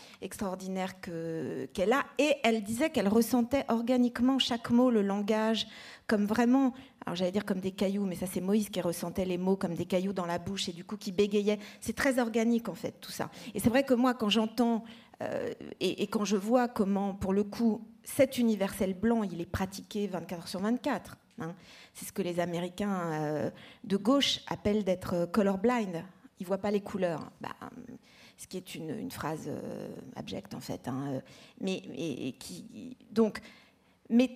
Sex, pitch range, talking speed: female, 195-235 Hz, 185 wpm